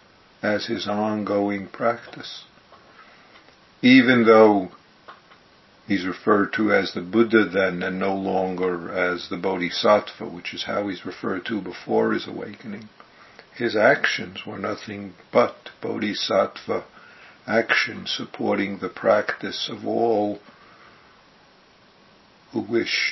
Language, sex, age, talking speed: English, male, 60-79, 110 wpm